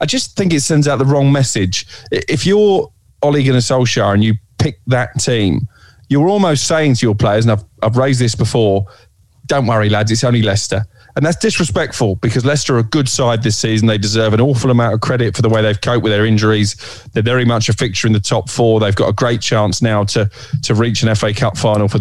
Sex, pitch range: male, 105-125 Hz